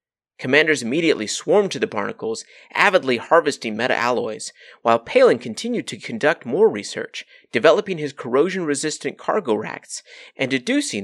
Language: English